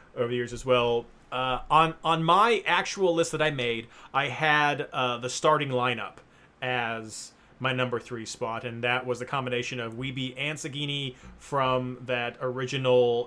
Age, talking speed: 30-49, 165 wpm